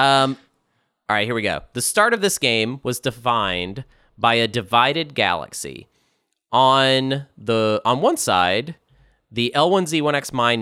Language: English